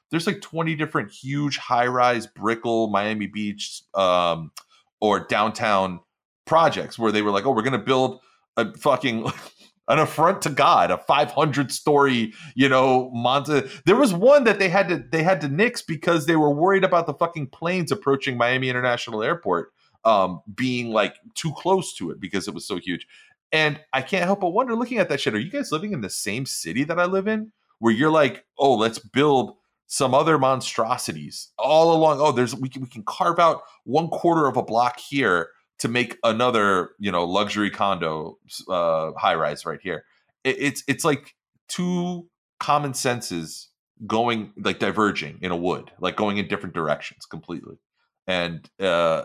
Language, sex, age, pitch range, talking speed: English, male, 30-49, 110-165 Hz, 180 wpm